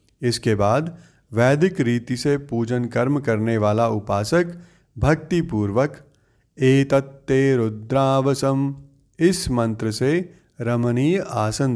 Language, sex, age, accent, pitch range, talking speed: Hindi, male, 30-49, native, 115-140 Hz, 95 wpm